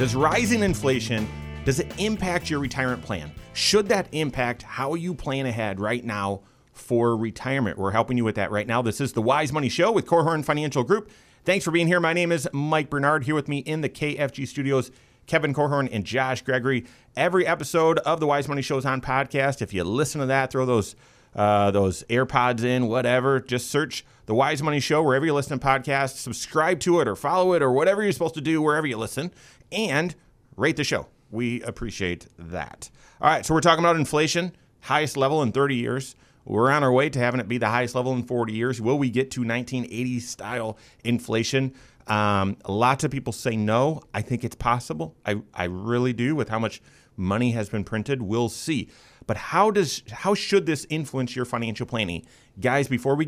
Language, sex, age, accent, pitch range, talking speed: English, male, 30-49, American, 115-150 Hz, 205 wpm